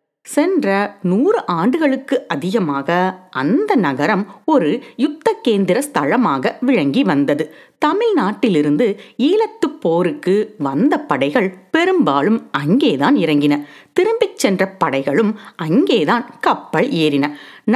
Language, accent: Tamil, native